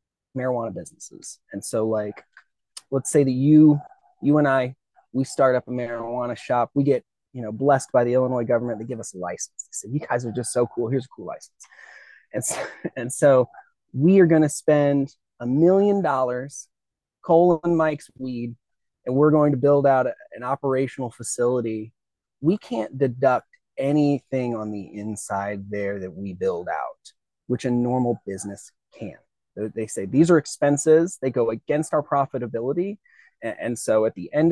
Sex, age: male, 30-49